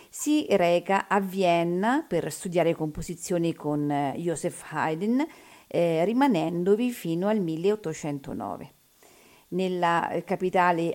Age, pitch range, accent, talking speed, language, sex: 50-69, 165-215 Hz, native, 95 wpm, Italian, female